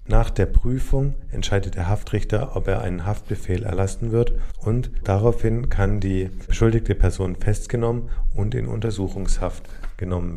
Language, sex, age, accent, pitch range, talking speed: German, male, 40-59, German, 95-120 Hz, 135 wpm